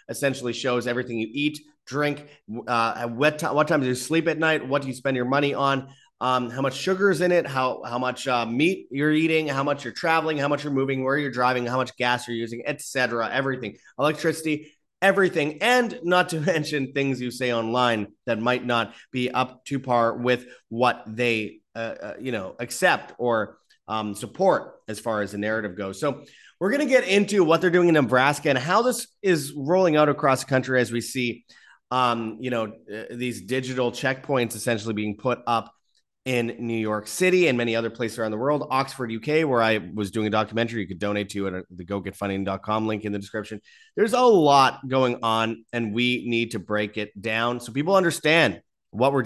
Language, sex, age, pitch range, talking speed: English, male, 30-49, 115-150 Hz, 205 wpm